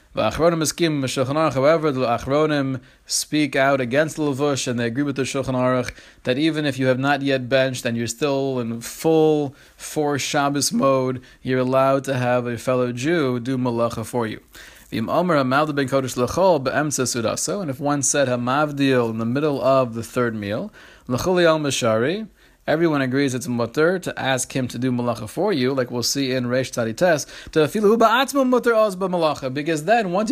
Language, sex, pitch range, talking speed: English, male, 130-160 Hz, 155 wpm